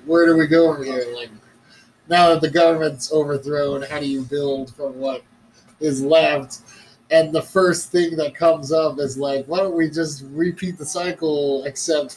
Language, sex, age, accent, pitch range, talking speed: English, male, 20-39, American, 135-155 Hz, 180 wpm